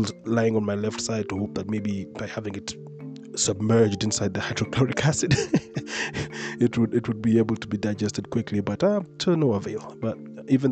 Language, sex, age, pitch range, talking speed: English, male, 20-39, 100-115 Hz, 185 wpm